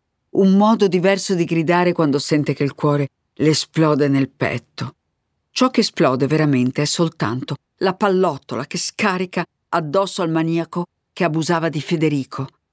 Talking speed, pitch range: 145 wpm, 140-185 Hz